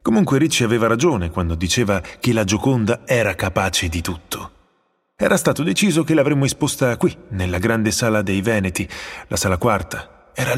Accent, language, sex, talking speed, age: native, Italian, male, 165 wpm, 30-49